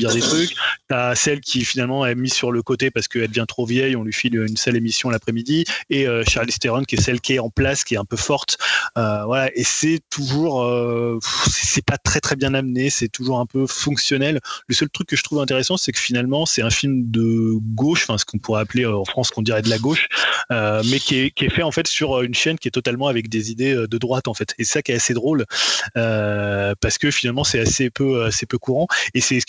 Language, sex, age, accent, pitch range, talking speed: French, male, 20-39, French, 115-135 Hz, 260 wpm